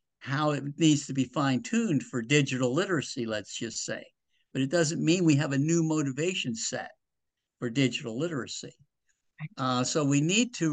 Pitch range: 135-170 Hz